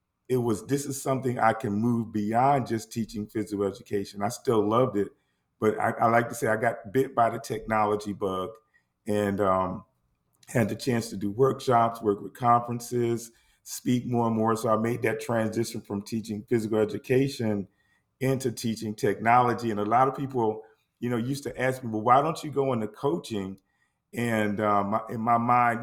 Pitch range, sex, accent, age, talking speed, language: 100-115 Hz, male, American, 40-59, 185 wpm, English